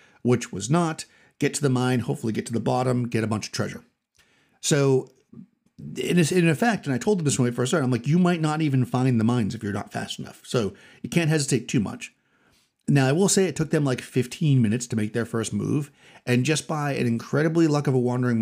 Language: English